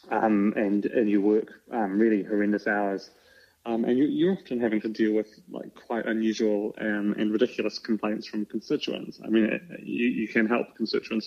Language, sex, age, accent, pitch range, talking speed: English, male, 30-49, British, 105-115 Hz, 185 wpm